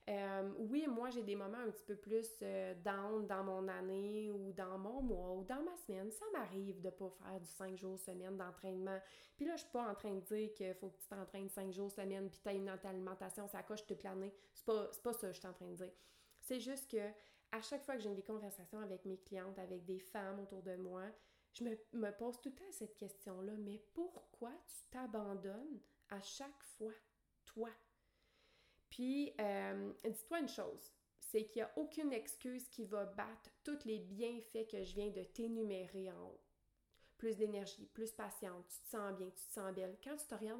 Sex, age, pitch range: female, 30-49, 190-225 Hz